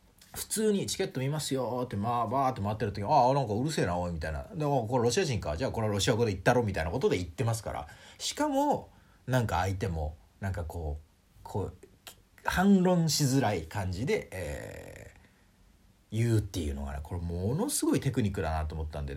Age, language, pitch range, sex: 40-59, Japanese, 85-125 Hz, male